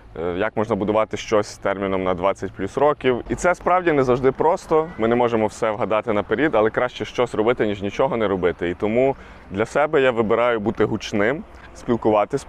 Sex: male